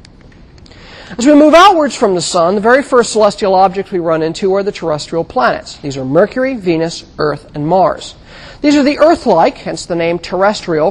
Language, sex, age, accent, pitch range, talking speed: English, male, 50-69, American, 175-255 Hz, 185 wpm